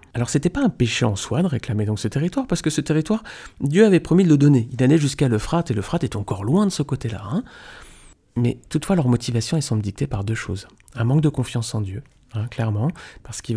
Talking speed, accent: 245 wpm, French